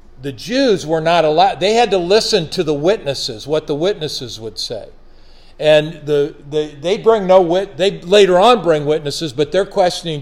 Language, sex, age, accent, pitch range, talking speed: English, male, 50-69, American, 140-195 Hz, 190 wpm